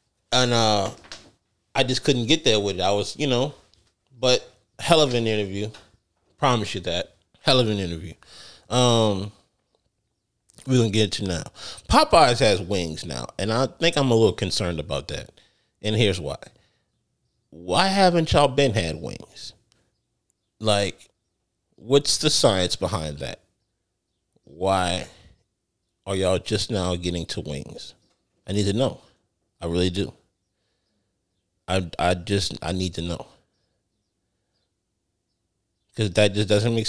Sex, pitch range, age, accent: male, 90-110 Hz, 30-49, American